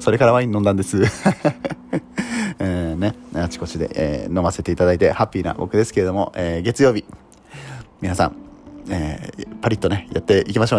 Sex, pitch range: male, 90-120 Hz